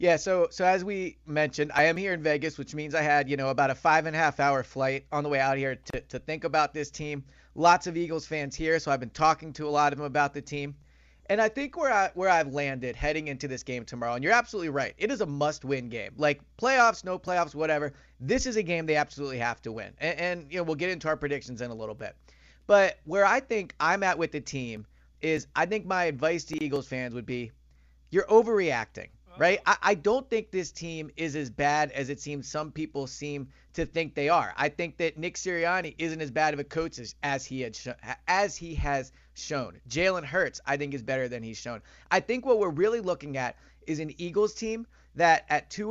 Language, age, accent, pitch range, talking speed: English, 30-49, American, 140-185 Hz, 240 wpm